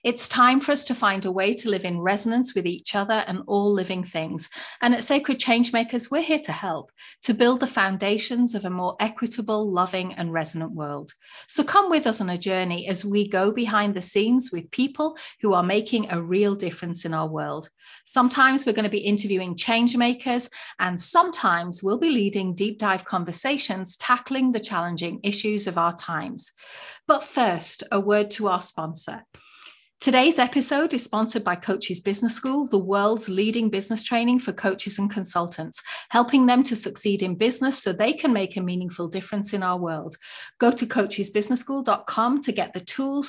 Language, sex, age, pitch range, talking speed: English, female, 40-59, 185-245 Hz, 180 wpm